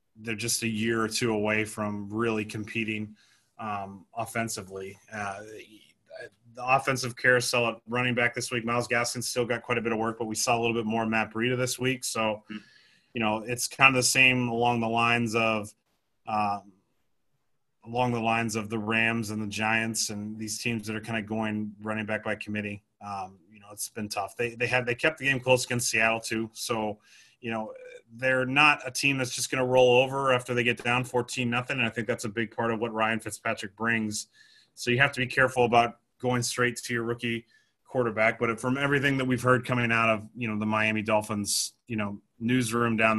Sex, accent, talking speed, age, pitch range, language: male, American, 215 wpm, 30-49, 110-120 Hz, English